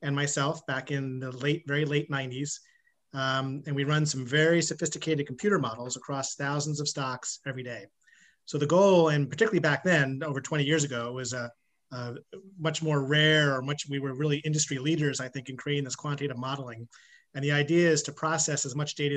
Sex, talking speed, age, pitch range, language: male, 200 wpm, 30-49, 135-155 Hz, English